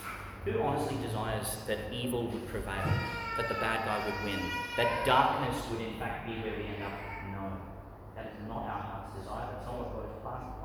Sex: male